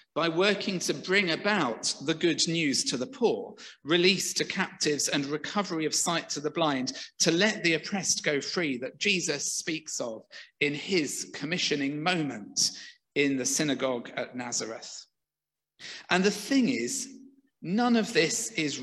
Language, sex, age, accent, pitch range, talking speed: English, male, 50-69, British, 155-210 Hz, 155 wpm